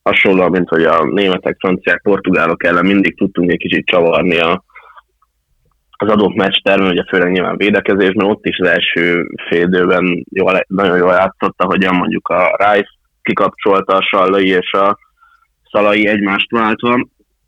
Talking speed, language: 150 wpm, Hungarian